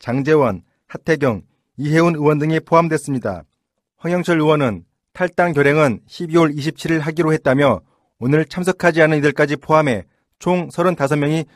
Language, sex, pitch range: Korean, male, 145-170 Hz